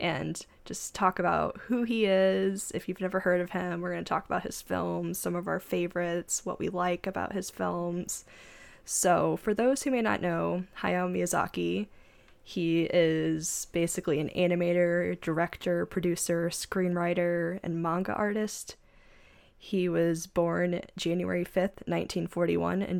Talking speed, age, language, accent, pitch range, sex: 145 wpm, 10-29, English, American, 175-195 Hz, female